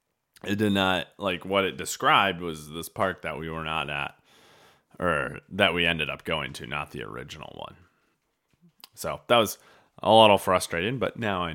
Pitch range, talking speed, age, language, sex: 80-120 Hz, 180 wpm, 20-39, English, male